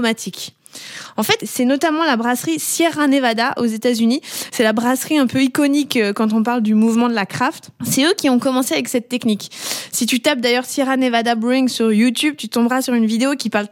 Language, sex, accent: French, female, French